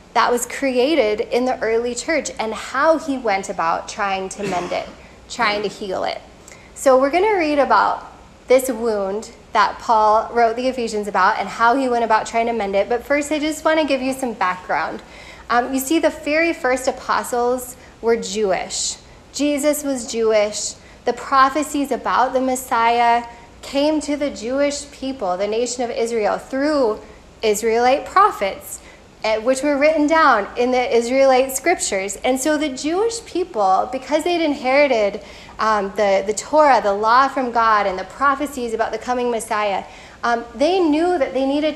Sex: female